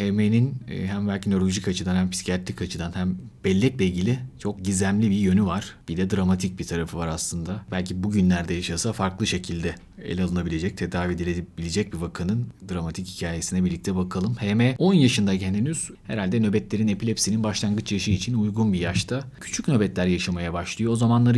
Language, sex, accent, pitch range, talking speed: Turkish, male, native, 95-110 Hz, 160 wpm